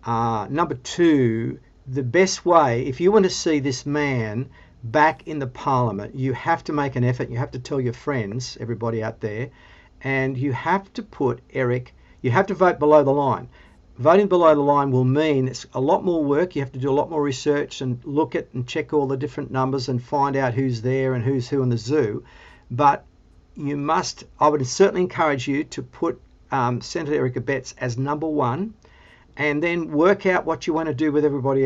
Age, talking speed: 50-69, 210 wpm